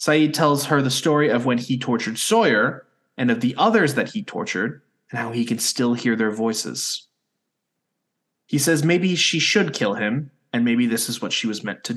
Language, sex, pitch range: English, male, 115-150 Hz